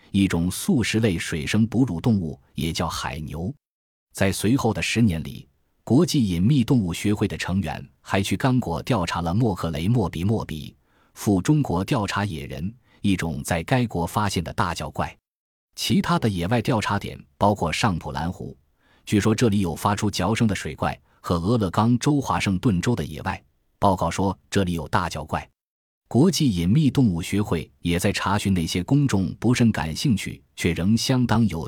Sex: male